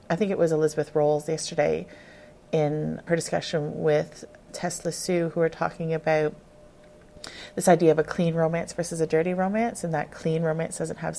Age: 30-49